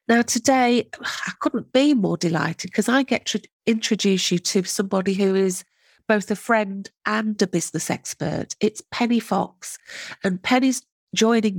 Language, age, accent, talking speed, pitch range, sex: English, 40-59, British, 155 wpm, 180-225 Hz, female